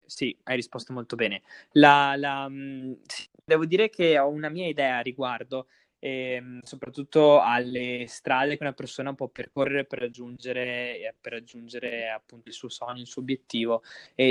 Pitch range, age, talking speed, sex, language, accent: 125-150 Hz, 20-39, 160 wpm, male, Italian, native